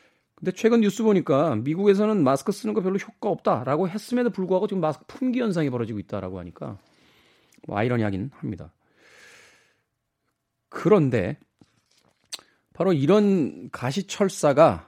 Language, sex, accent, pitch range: Korean, male, native, 105-160 Hz